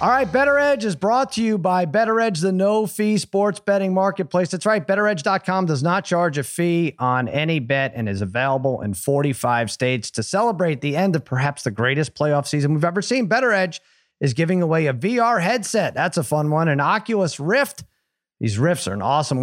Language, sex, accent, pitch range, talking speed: English, male, American, 130-180 Hz, 205 wpm